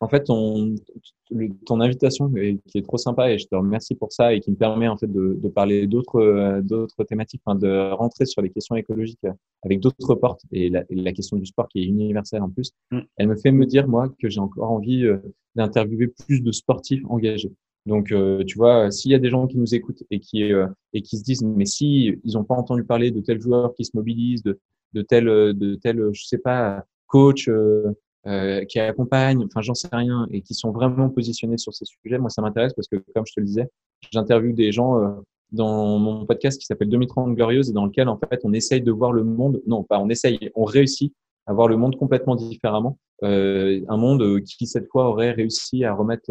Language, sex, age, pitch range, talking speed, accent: French, male, 20-39, 105-125 Hz, 220 wpm, French